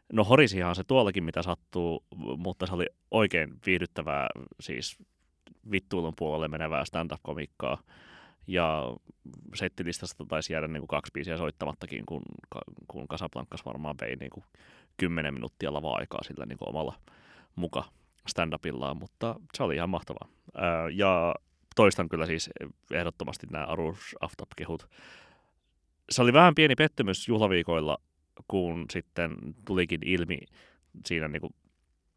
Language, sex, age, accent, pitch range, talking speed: Finnish, male, 30-49, native, 80-95 Hz, 125 wpm